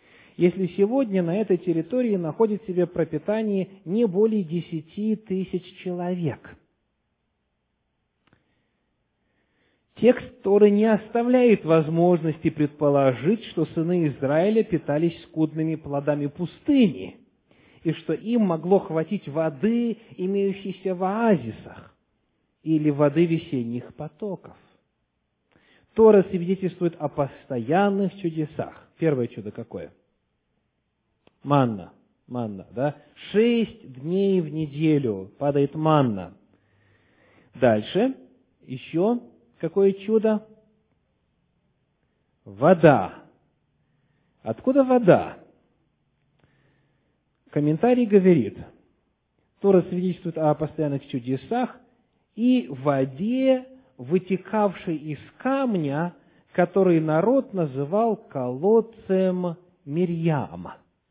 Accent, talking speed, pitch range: native, 80 wpm, 150-205 Hz